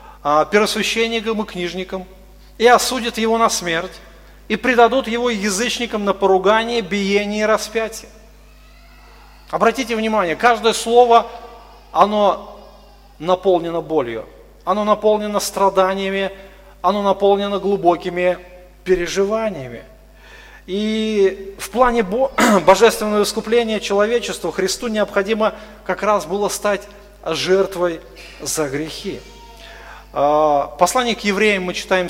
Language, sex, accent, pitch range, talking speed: Russian, male, native, 185-230 Hz, 95 wpm